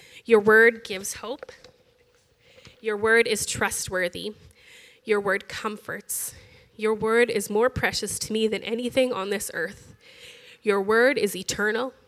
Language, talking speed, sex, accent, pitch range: English, 135 wpm, female, American, 210-255 Hz